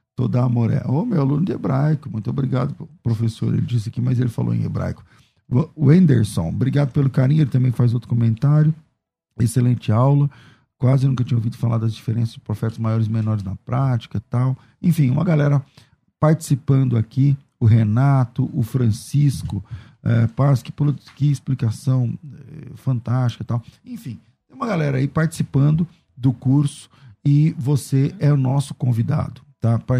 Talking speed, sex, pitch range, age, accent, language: 160 wpm, male, 120-145 Hz, 50-69, Brazilian, Portuguese